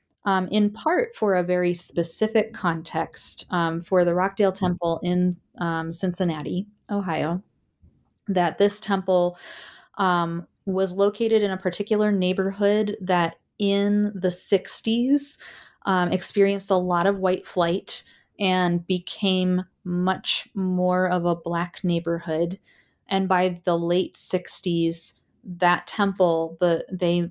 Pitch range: 170-195 Hz